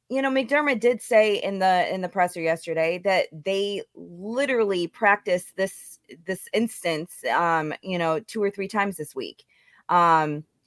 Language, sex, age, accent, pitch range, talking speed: English, female, 20-39, American, 160-195 Hz, 155 wpm